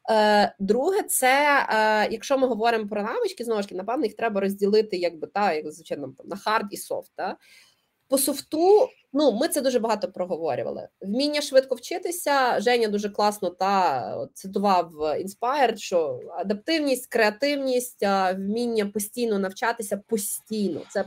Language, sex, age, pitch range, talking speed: Ukrainian, female, 20-39, 200-255 Hz, 140 wpm